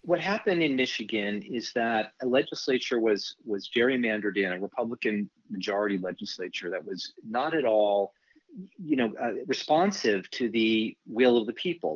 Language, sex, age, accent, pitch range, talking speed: English, male, 40-59, American, 105-130 Hz, 155 wpm